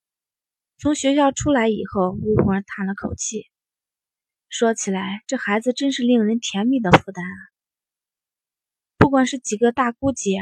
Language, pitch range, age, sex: Chinese, 200-255 Hz, 20-39, female